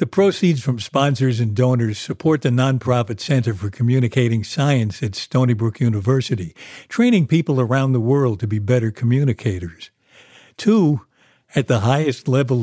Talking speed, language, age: 145 wpm, English, 60-79